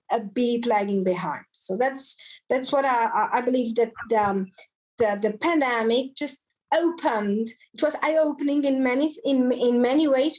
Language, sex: English, female